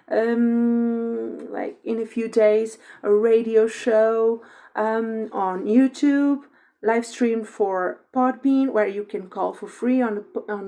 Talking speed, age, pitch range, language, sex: 130 wpm, 40-59, 205-255 Hz, English, female